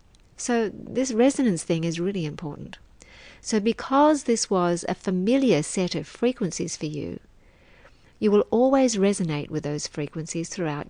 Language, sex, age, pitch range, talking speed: English, female, 50-69, 160-220 Hz, 145 wpm